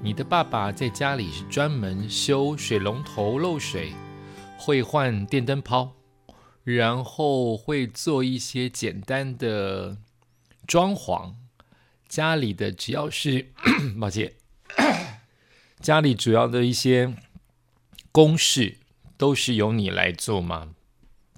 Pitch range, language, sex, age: 110-145 Hz, Chinese, male, 50-69